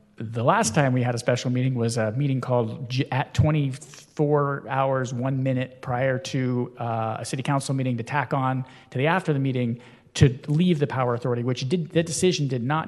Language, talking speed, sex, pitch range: English, 200 wpm, male, 115-140 Hz